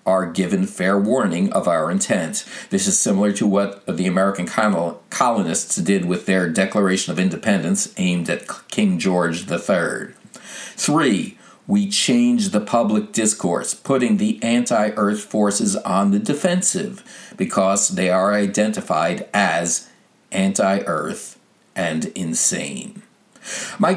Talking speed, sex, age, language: 120 wpm, male, 50-69, English